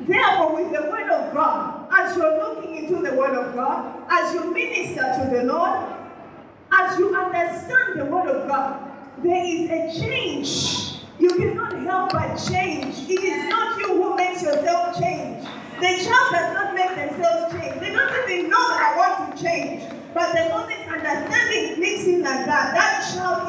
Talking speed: 180 wpm